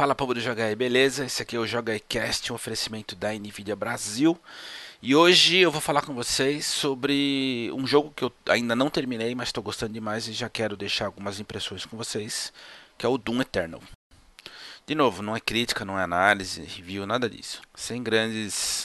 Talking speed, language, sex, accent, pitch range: 195 wpm, Portuguese, male, Brazilian, 95-115 Hz